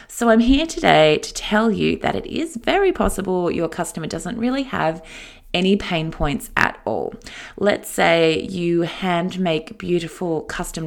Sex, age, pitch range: female, 20-39, 165-235 Hz